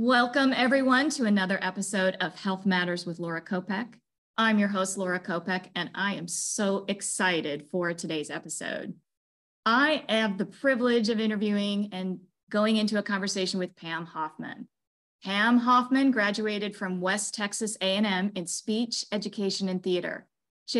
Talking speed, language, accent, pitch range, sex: 145 wpm, English, American, 185-230 Hz, female